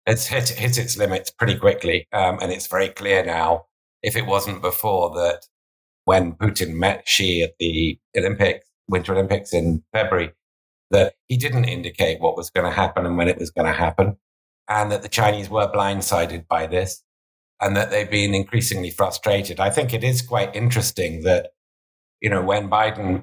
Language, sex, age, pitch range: English, male, 50-69, 90-115 Hz